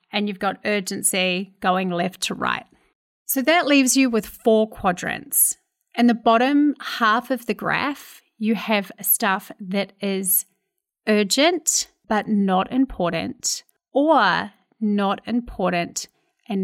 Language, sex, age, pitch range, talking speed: English, female, 30-49, 195-275 Hz, 125 wpm